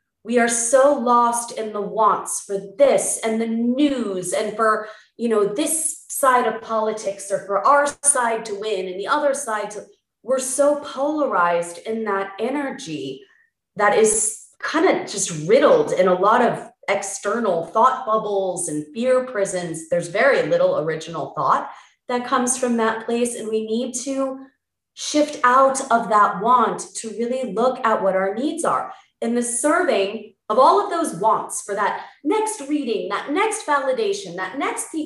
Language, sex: English, female